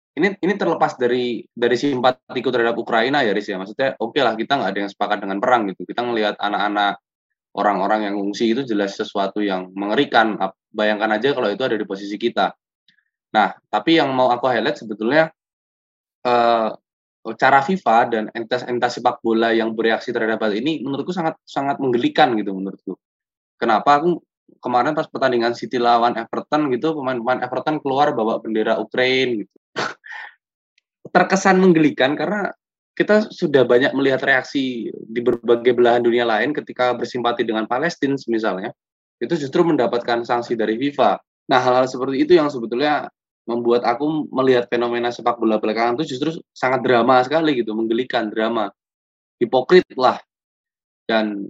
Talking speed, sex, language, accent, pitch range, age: 150 wpm, male, Indonesian, native, 110-135 Hz, 20-39